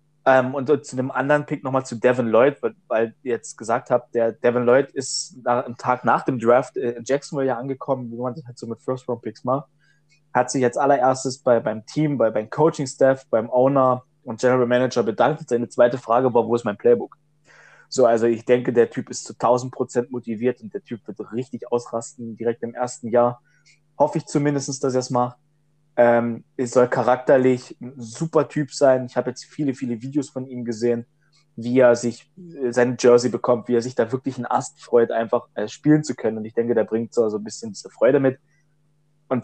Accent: German